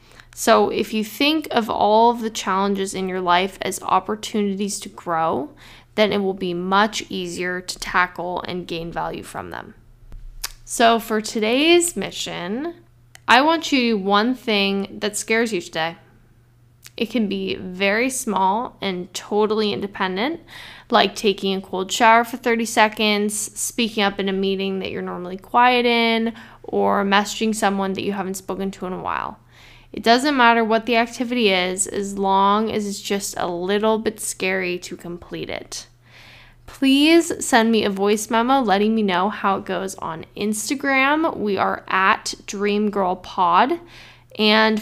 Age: 10-29